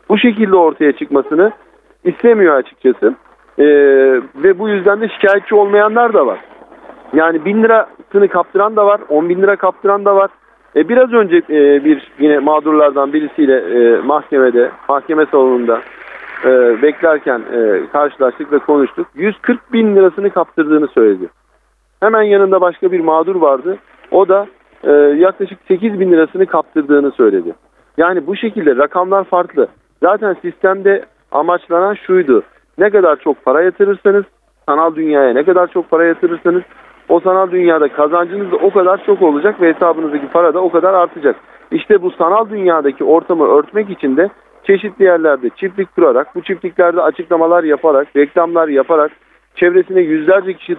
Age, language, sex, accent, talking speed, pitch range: 50-69, Turkish, male, native, 145 wpm, 155-210 Hz